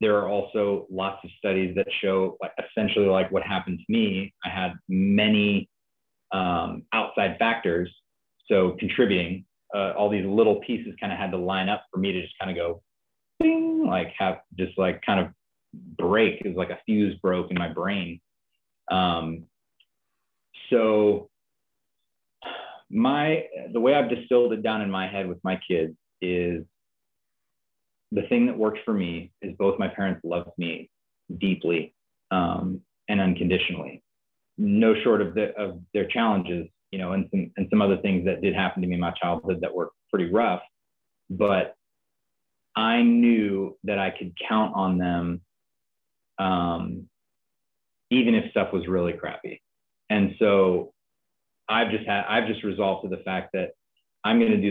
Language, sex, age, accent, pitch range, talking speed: English, male, 30-49, American, 90-105 Hz, 160 wpm